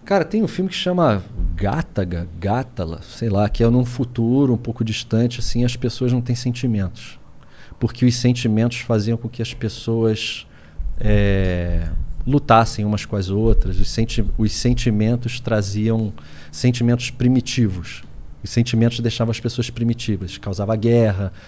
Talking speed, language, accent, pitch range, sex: 145 wpm, Portuguese, Brazilian, 105-130 Hz, male